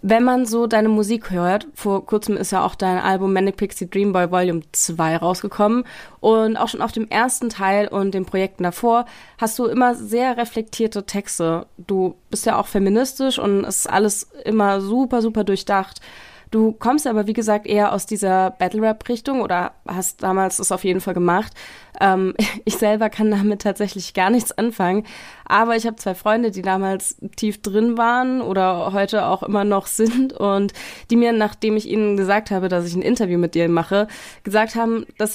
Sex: female